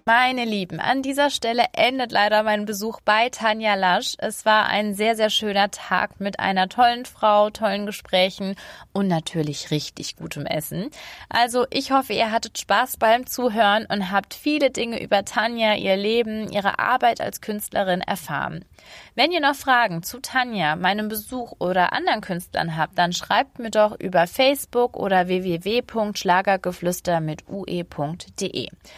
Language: German